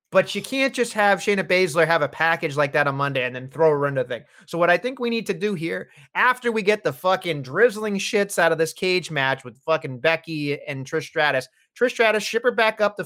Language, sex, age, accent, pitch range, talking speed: English, male, 30-49, American, 145-185 Hz, 255 wpm